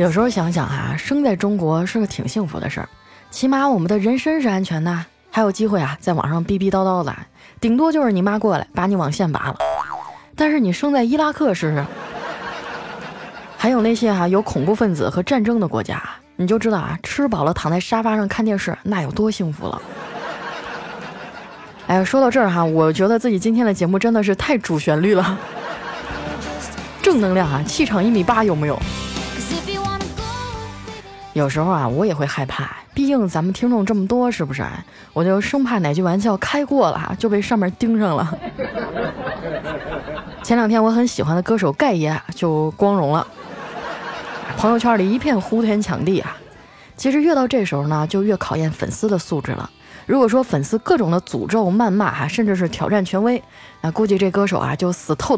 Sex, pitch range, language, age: female, 160-225 Hz, Chinese, 20-39